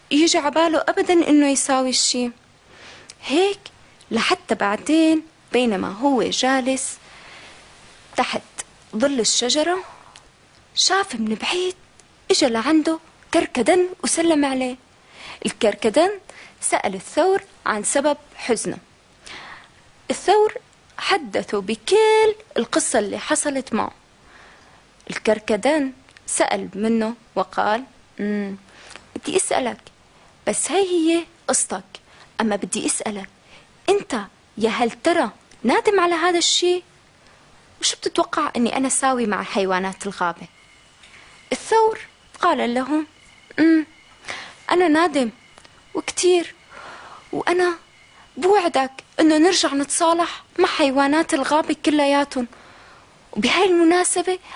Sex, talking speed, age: female, 90 wpm, 20-39